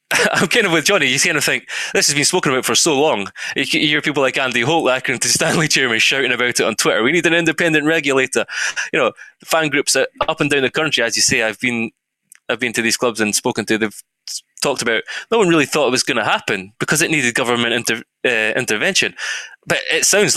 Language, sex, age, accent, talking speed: English, male, 20-39, British, 240 wpm